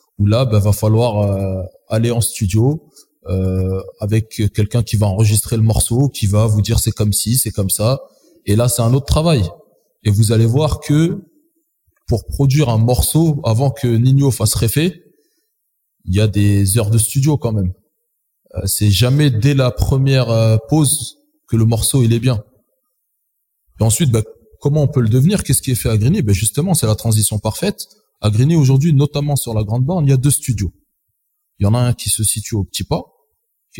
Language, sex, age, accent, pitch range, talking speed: French, male, 20-39, French, 110-145 Hz, 205 wpm